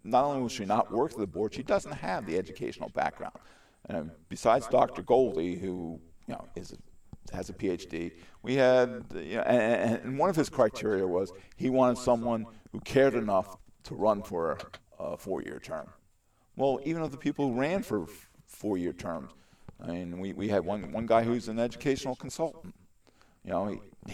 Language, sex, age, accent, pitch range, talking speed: English, male, 50-69, American, 95-125 Hz, 185 wpm